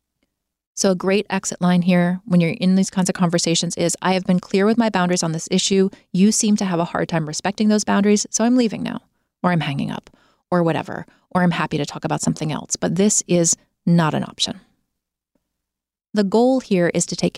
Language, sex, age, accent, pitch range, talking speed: English, female, 30-49, American, 180-215 Hz, 220 wpm